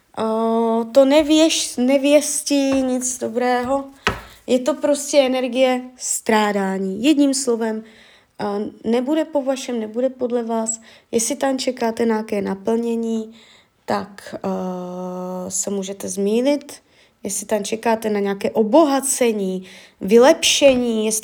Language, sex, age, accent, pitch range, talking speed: Czech, female, 20-39, native, 215-265 Hz, 95 wpm